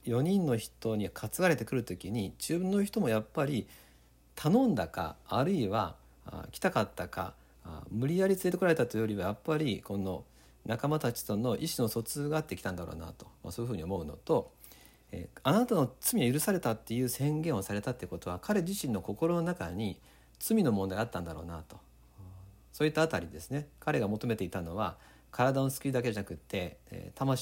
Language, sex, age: Japanese, male, 50-69